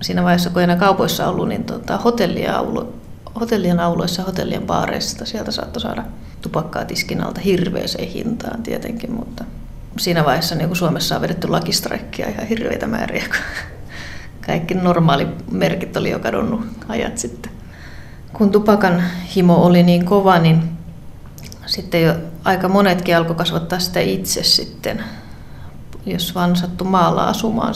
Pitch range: 175-205 Hz